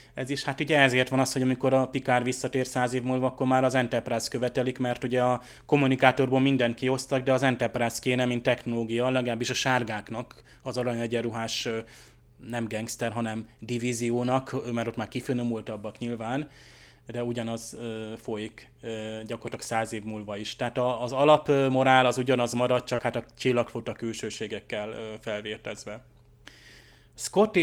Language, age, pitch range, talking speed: Hungarian, 30-49, 120-135 Hz, 145 wpm